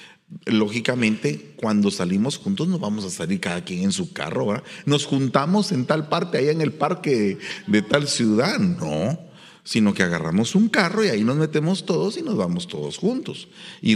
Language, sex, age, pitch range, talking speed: English, male, 40-59, 115-190 Hz, 175 wpm